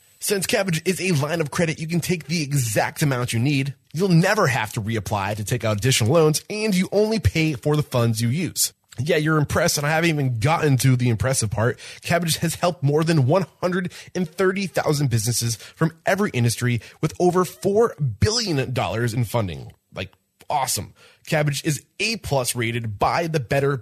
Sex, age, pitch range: male, 20-39, 115-165 Hz